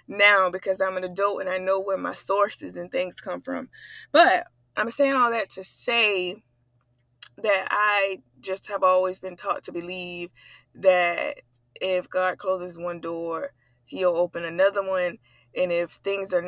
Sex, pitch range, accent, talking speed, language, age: female, 165-215 Hz, American, 165 wpm, English, 20-39